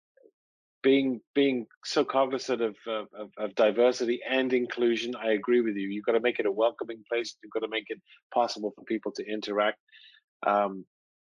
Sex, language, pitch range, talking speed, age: male, English, 105-125 Hz, 175 wpm, 40-59